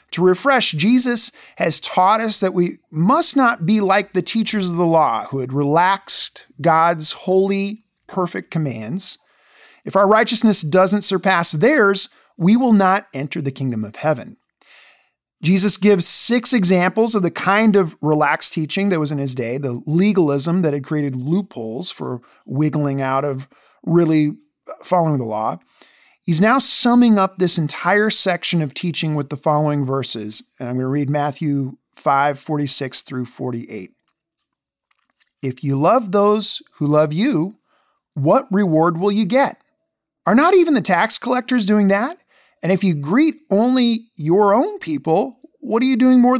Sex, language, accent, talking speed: male, English, American, 160 wpm